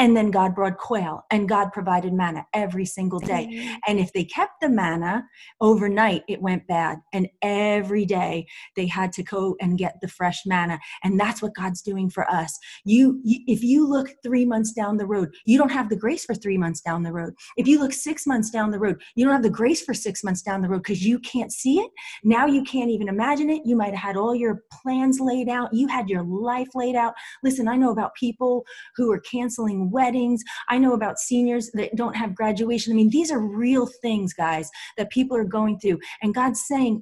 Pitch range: 190-240 Hz